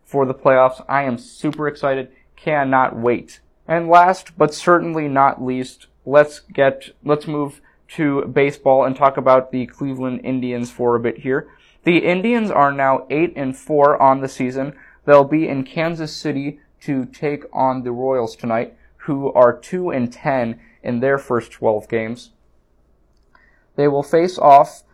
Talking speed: 160 wpm